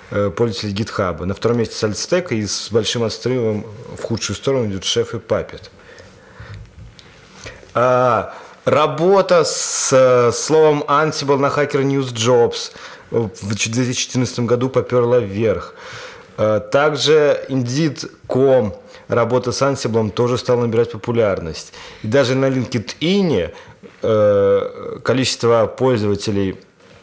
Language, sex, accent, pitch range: Russian, male, native, 115-155 Hz